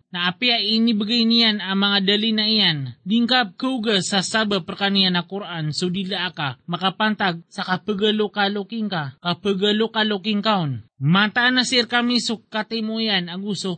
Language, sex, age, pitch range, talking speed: Filipino, male, 30-49, 190-230 Hz, 140 wpm